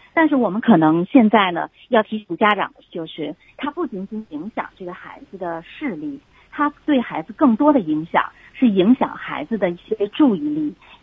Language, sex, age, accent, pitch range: Chinese, female, 30-49, native, 190-265 Hz